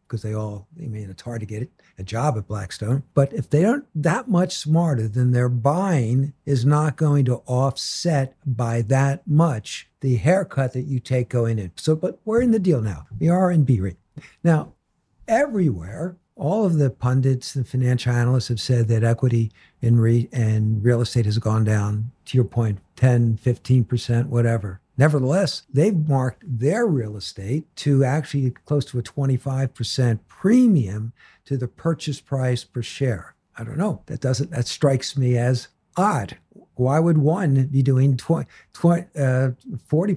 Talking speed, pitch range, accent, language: 165 wpm, 120-165 Hz, American, English